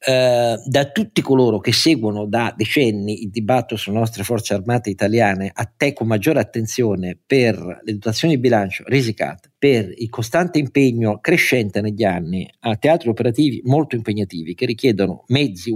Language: Italian